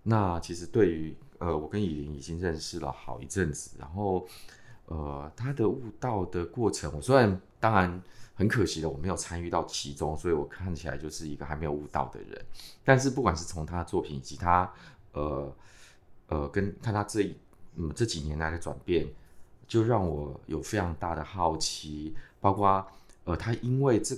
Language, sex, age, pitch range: Chinese, male, 20-39, 80-105 Hz